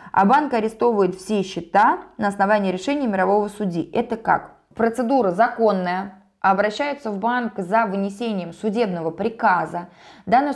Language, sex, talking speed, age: Russian, female, 125 wpm, 20-39